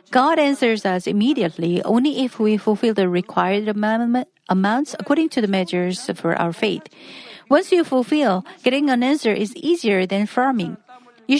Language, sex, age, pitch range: Korean, female, 50-69, 195-255 Hz